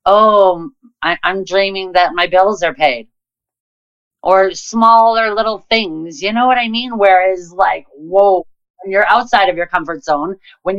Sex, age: female, 30-49